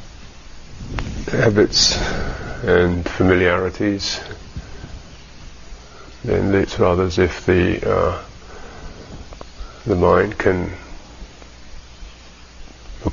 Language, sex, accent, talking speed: English, male, British, 65 wpm